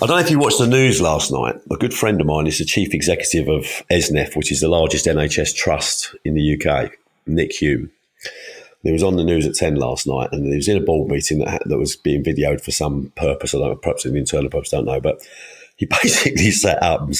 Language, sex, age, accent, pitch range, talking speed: English, male, 40-59, British, 80-120 Hz, 255 wpm